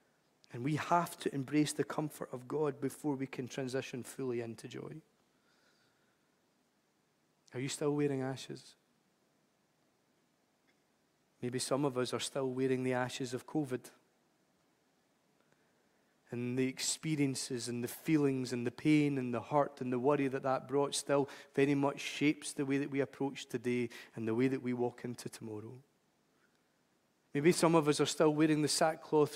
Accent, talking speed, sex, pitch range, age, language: British, 155 wpm, male, 125-145 Hz, 40-59, English